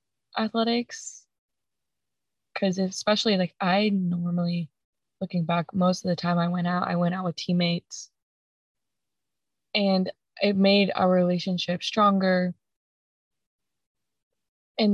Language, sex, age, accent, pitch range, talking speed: English, female, 20-39, American, 175-195 Hz, 110 wpm